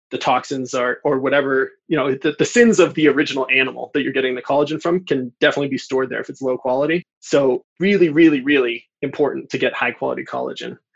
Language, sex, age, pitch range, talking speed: English, male, 20-39, 135-170 Hz, 215 wpm